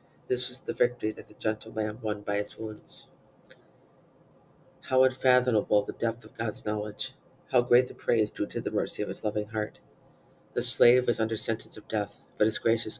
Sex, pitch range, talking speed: female, 105-125 Hz, 190 wpm